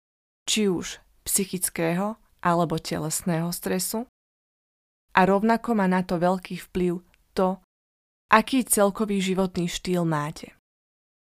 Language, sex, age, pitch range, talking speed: Slovak, female, 20-39, 175-200 Hz, 100 wpm